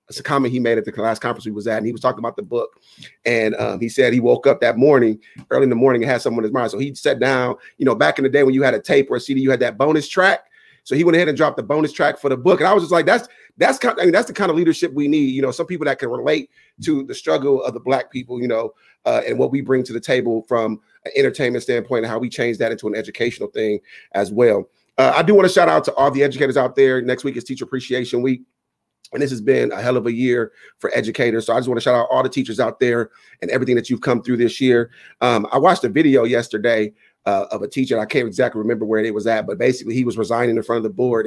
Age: 30-49